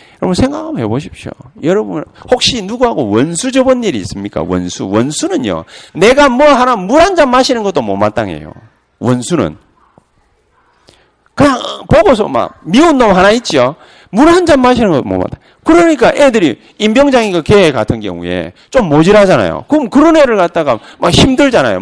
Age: 40-59